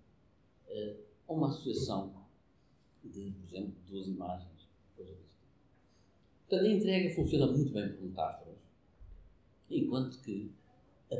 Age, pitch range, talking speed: 50-69, 95-140 Hz, 115 wpm